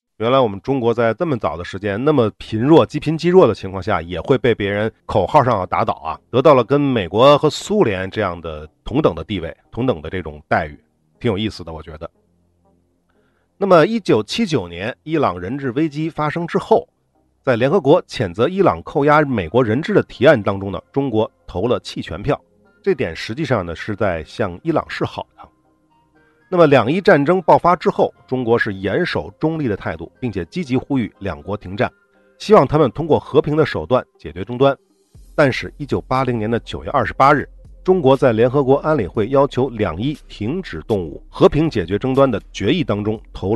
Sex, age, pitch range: male, 50-69, 95-145 Hz